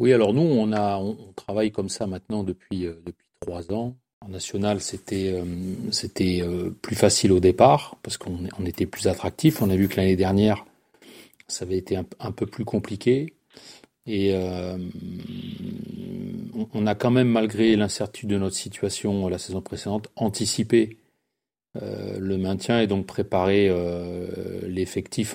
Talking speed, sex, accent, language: 155 wpm, male, French, French